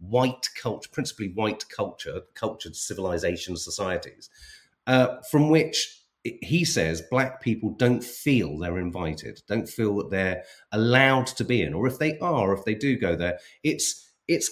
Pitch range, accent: 100-150 Hz, British